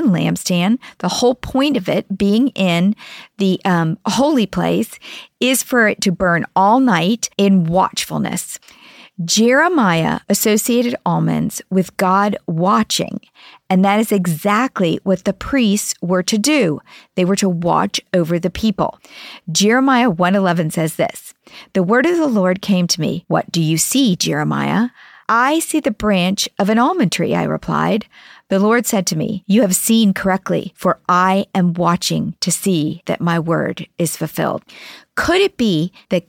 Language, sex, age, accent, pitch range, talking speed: English, female, 50-69, American, 175-230 Hz, 155 wpm